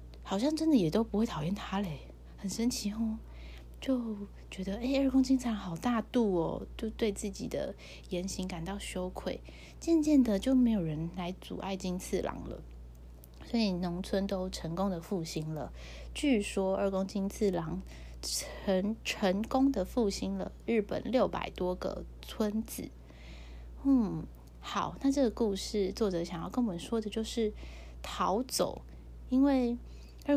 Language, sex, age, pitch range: Chinese, female, 20-39, 160-225 Hz